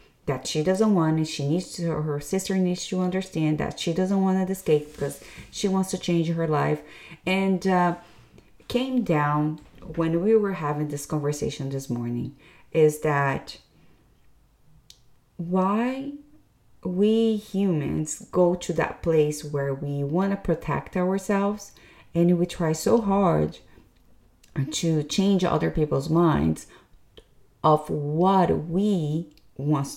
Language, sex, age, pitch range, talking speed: English, female, 30-49, 150-195 Hz, 135 wpm